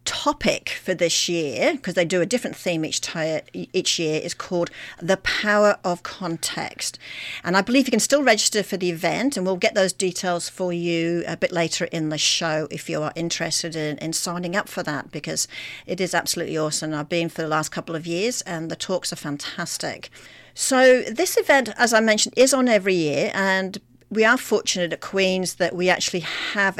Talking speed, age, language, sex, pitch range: 200 wpm, 40-59, English, female, 165-195 Hz